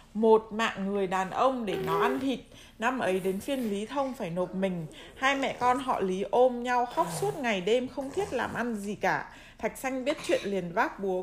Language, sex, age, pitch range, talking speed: Vietnamese, female, 20-39, 195-260 Hz, 225 wpm